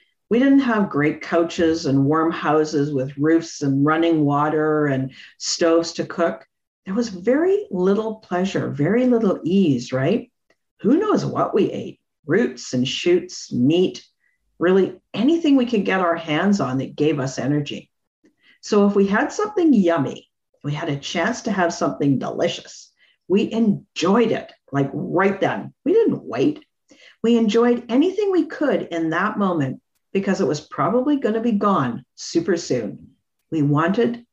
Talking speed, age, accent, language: 155 wpm, 50-69, American, English